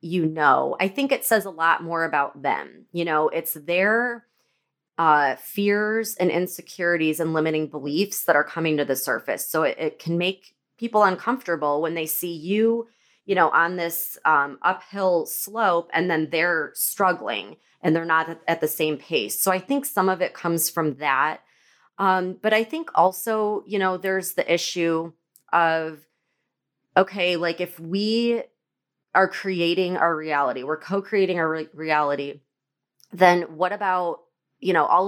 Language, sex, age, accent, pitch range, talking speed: English, female, 30-49, American, 160-200 Hz, 165 wpm